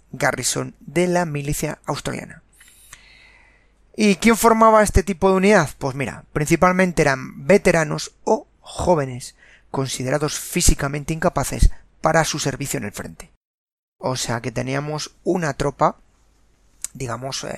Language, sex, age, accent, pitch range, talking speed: Spanish, male, 30-49, Spanish, 140-180 Hz, 120 wpm